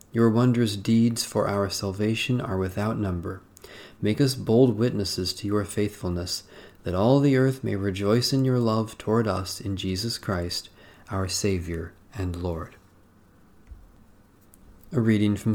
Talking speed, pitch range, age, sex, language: 145 wpm, 95-120 Hz, 40-59, male, English